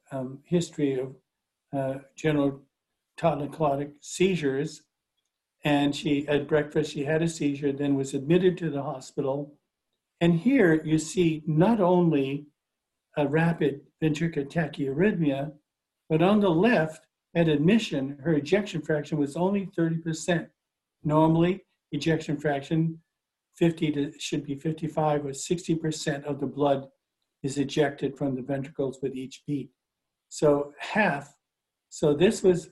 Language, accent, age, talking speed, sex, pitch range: English, American, 60-79, 130 wpm, male, 140-165 Hz